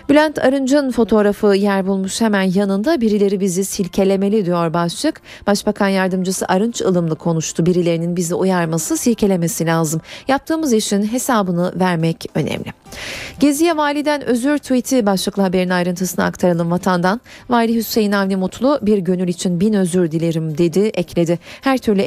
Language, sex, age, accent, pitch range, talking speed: Turkish, female, 40-59, native, 185-235 Hz, 135 wpm